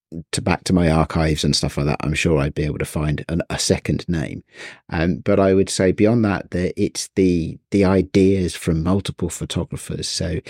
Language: English